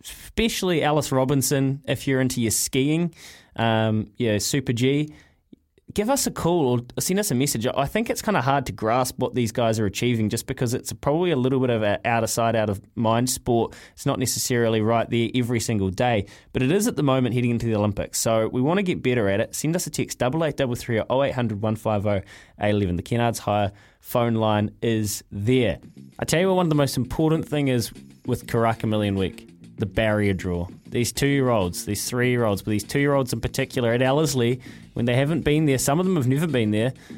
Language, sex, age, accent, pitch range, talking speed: English, male, 20-39, Australian, 110-140 Hz, 215 wpm